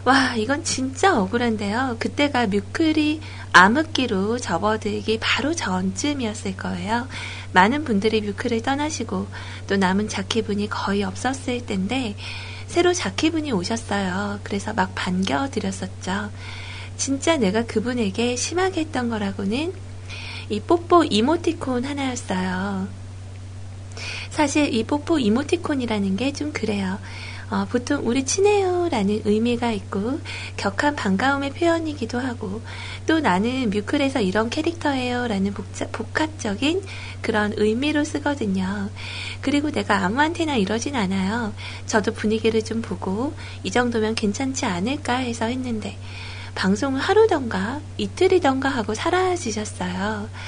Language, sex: Korean, female